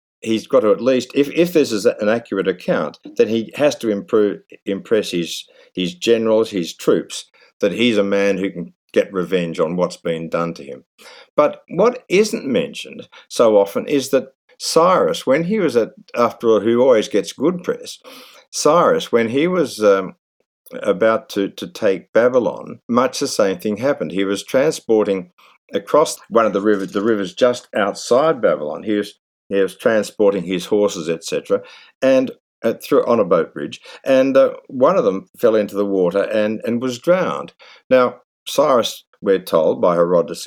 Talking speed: 180 wpm